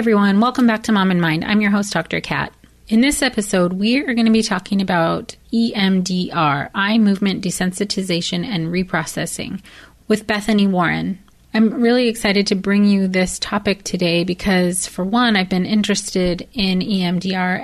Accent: American